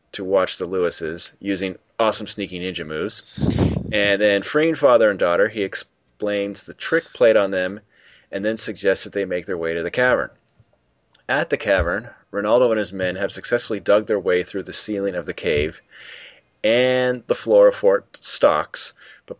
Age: 30-49